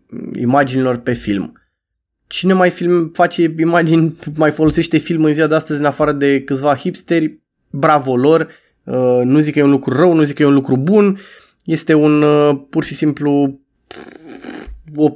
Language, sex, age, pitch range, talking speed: Romanian, male, 20-39, 140-175 Hz, 165 wpm